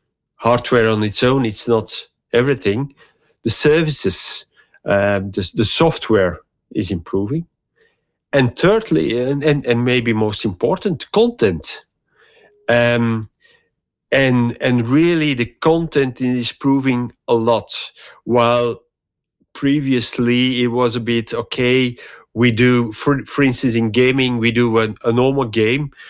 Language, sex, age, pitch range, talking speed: Dutch, male, 50-69, 110-130 Hz, 125 wpm